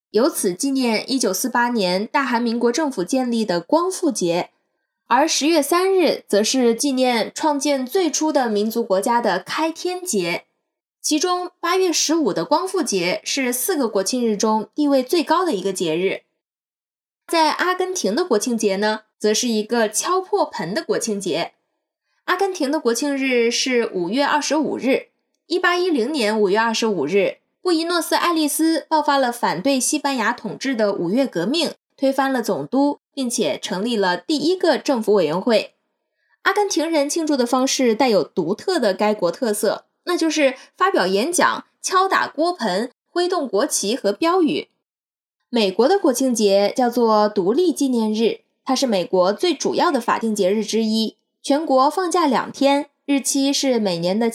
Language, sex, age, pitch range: Chinese, female, 10-29, 220-315 Hz